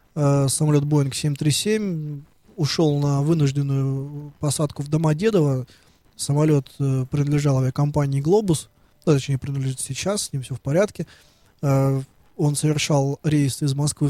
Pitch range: 140-165 Hz